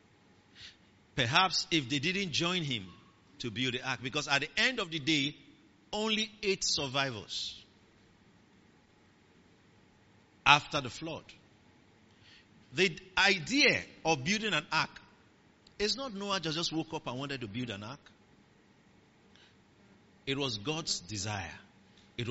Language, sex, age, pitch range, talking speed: English, male, 50-69, 110-185 Hz, 125 wpm